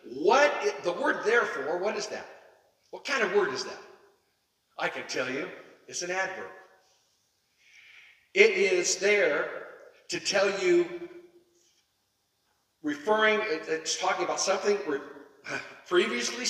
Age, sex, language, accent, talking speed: 60-79, male, English, American, 115 wpm